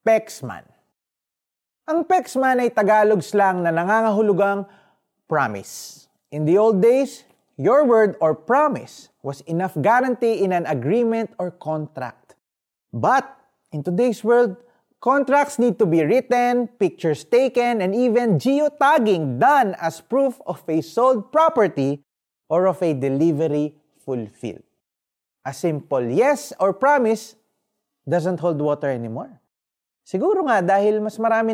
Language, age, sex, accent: Filipino, 20-39, male, native